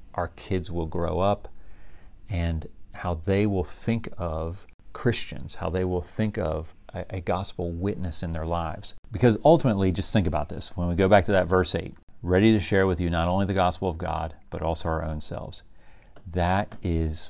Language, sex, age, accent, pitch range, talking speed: English, male, 40-59, American, 85-105 Hz, 195 wpm